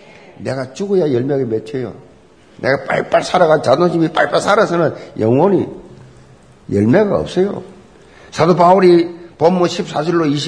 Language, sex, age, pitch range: Korean, male, 50-69, 150-200 Hz